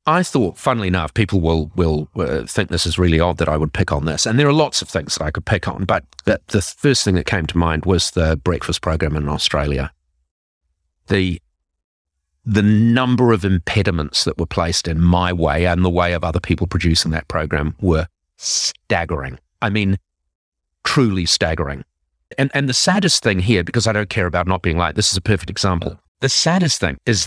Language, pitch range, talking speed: English, 80-120 Hz, 205 wpm